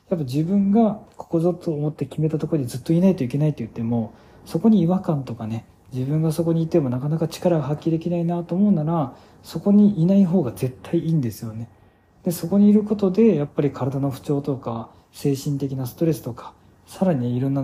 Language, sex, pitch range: Japanese, male, 125-175 Hz